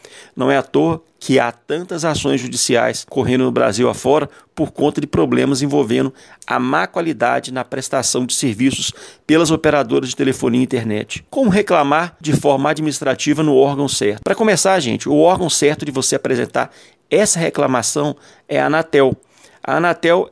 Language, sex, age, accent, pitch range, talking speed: Portuguese, male, 40-59, Brazilian, 145-190 Hz, 160 wpm